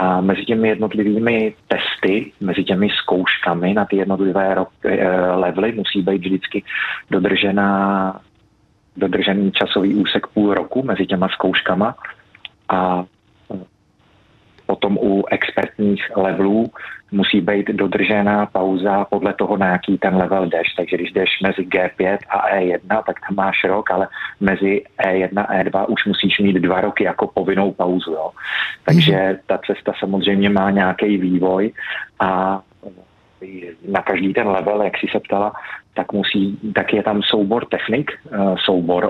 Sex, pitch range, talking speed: male, 95-105 Hz, 130 wpm